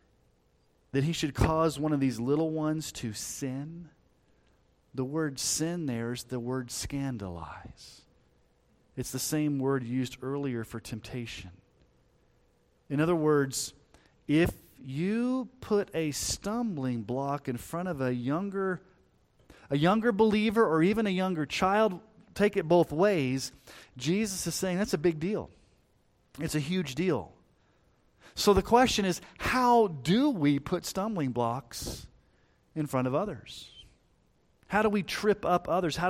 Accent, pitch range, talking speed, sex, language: American, 125-185 Hz, 140 wpm, male, English